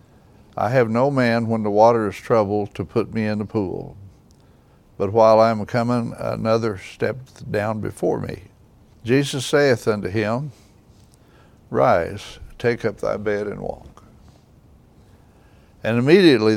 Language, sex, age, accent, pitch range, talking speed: English, male, 60-79, American, 105-120 Hz, 140 wpm